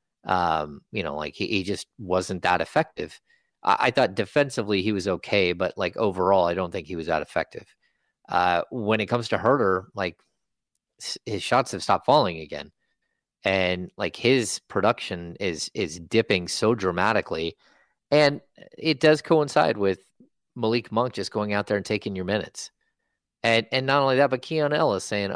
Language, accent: English, American